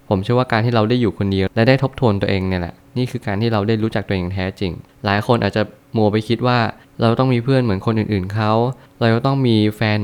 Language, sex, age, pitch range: Thai, male, 20-39, 100-120 Hz